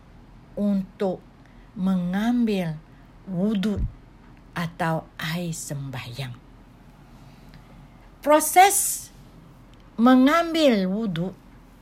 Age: 60-79